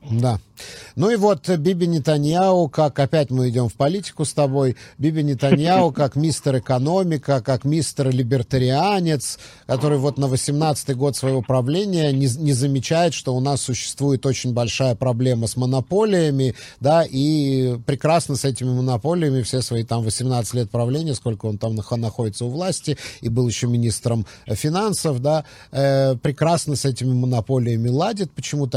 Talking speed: 150 wpm